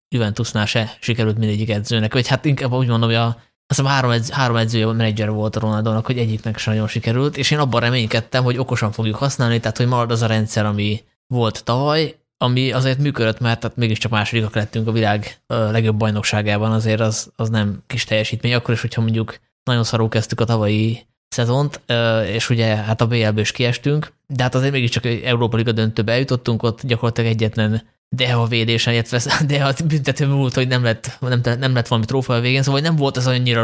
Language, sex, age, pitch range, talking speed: Hungarian, male, 20-39, 115-130 Hz, 195 wpm